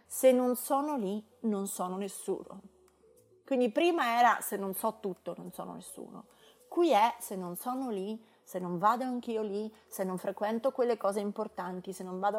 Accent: native